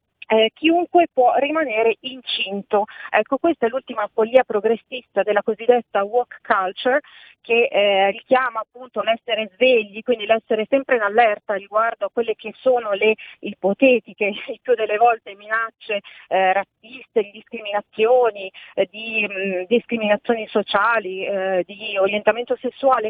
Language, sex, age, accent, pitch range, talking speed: Italian, female, 40-59, native, 210-255 Hz, 130 wpm